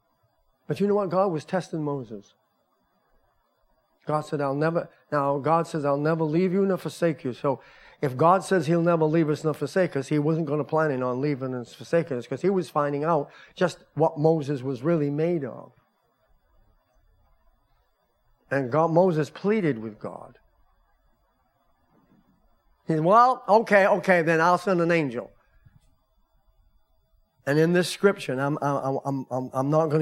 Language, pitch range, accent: English, 145-190 Hz, American